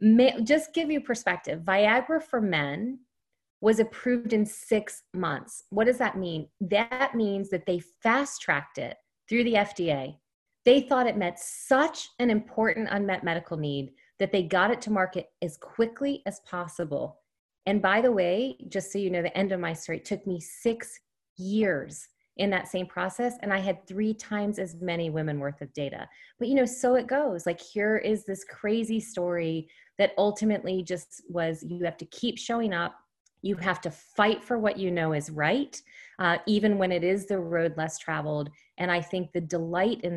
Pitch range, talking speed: 160-215 Hz, 185 wpm